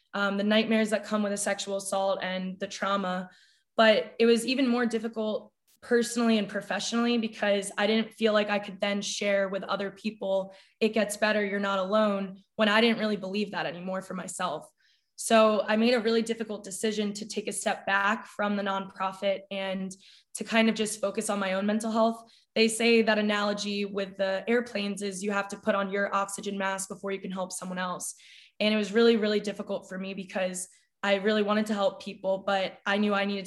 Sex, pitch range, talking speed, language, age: female, 195-215 Hz, 210 wpm, English, 20-39